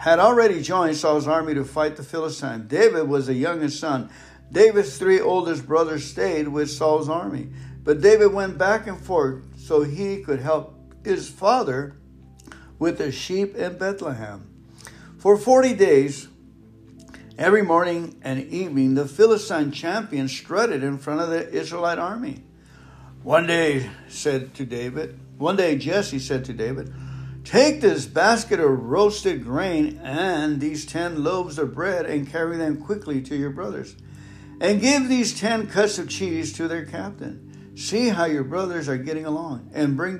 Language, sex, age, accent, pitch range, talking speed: English, male, 60-79, American, 135-185 Hz, 155 wpm